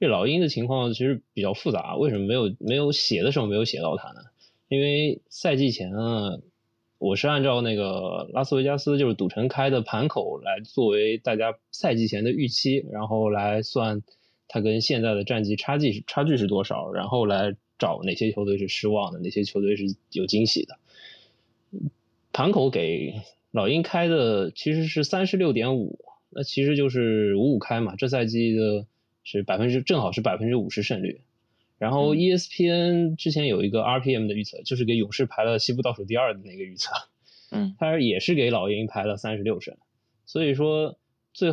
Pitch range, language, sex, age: 105-140 Hz, Chinese, male, 20-39